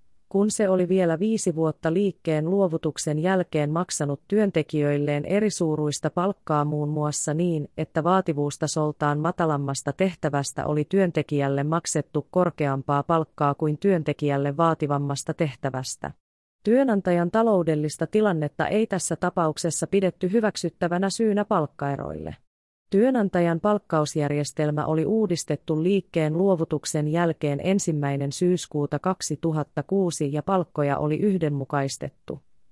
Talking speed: 100 wpm